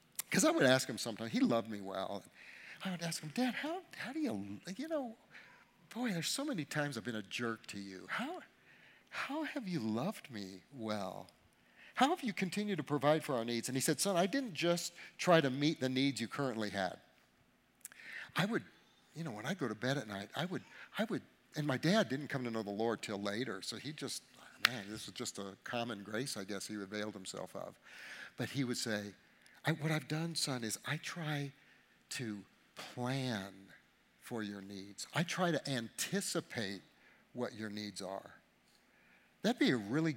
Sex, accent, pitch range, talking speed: male, American, 105-165 Hz, 200 wpm